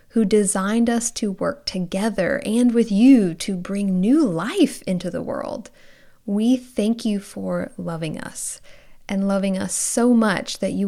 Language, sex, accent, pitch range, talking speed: English, female, American, 185-220 Hz, 160 wpm